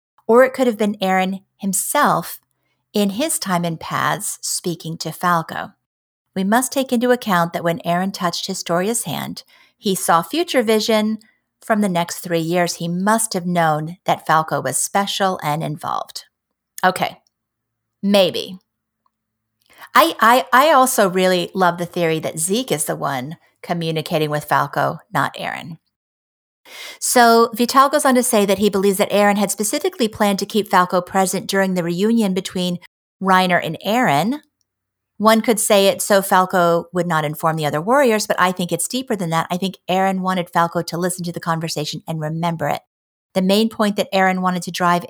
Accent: American